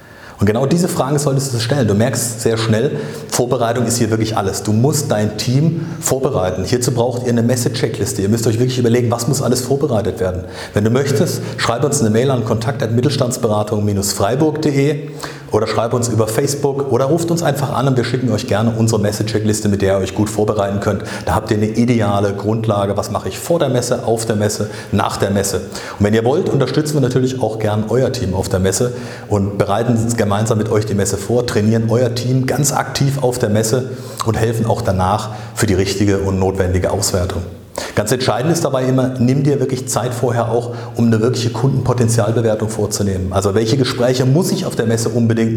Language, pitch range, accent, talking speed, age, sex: German, 105-135 Hz, German, 200 wpm, 40-59, male